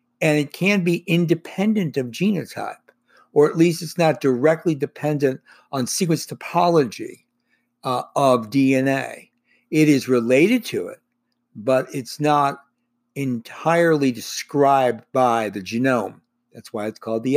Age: 60-79